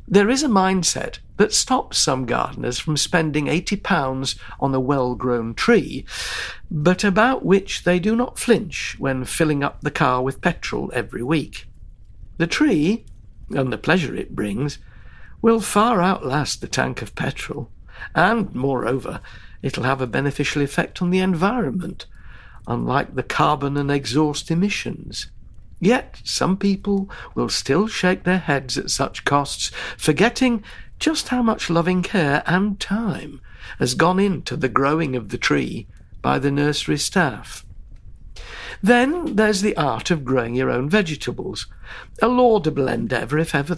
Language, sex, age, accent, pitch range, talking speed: English, male, 60-79, British, 130-195 Hz, 145 wpm